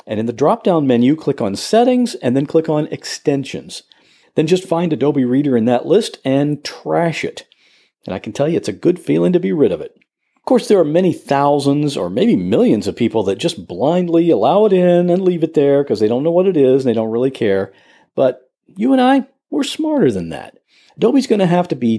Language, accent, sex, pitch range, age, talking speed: English, American, male, 135-210 Hz, 50-69, 230 wpm